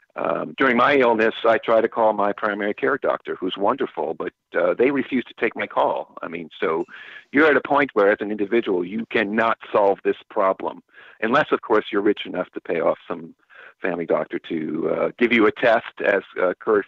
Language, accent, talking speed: English, American, 210 wpm